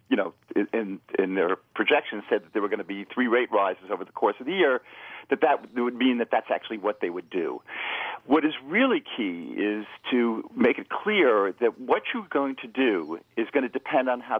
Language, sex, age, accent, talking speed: English, male, 50-69, American, 225 wpm